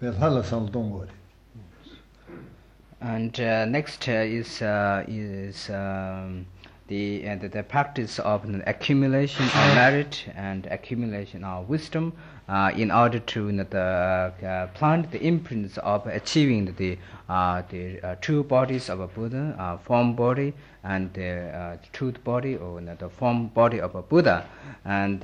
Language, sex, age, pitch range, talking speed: Italian, male, 50-69, 95-120 Hz, 160 wpm